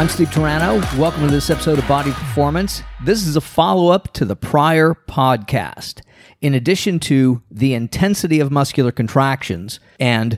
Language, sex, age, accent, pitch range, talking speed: English, male, 50-69, American, 120-155 Hz, 155 wpm